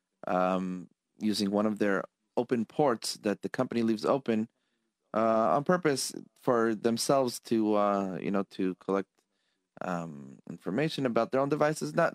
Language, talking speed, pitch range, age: English, 145 wpm, 95-115 Hz, 30-49